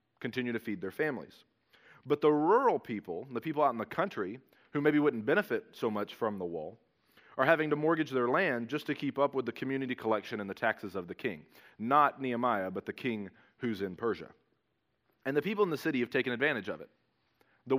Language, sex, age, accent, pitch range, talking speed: English, male, 30-49, American, 110-140 Hz, 215 wpm